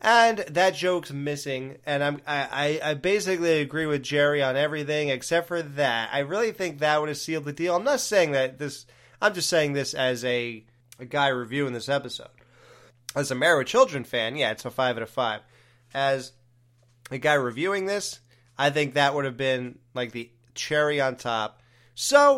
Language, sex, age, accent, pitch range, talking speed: English, male, 20-39, American, 120-150 Hz, 190 wpm